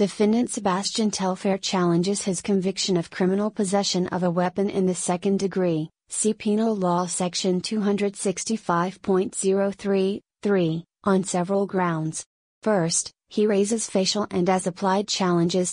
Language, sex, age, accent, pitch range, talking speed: English, female, 30-49, American, 180-200 Hz, 120 wpm